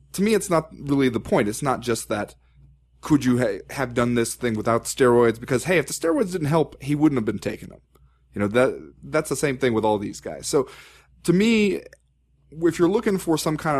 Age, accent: 30-49, American